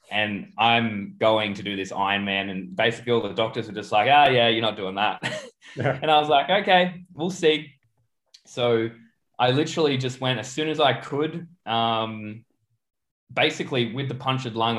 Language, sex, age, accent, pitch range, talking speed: English, male, 20-39, Australian, 110-130 Hz, 180 wpm